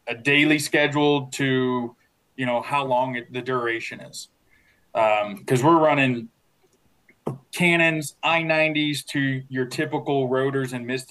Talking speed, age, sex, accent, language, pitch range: 125 wpm, 20-39, male, American, English, 120-140 Hz